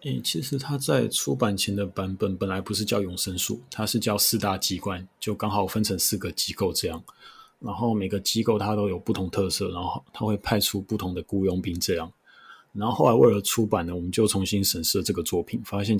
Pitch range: 95-105 Hz